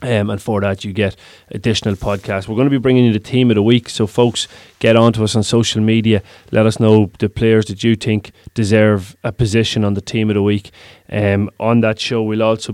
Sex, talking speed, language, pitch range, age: male, 240 wpm, English, 100-110 Hz, 20-39